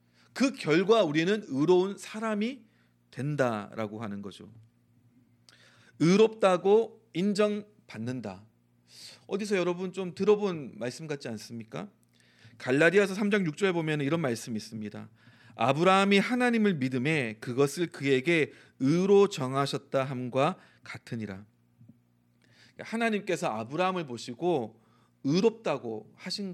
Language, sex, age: Korean, male, 40-59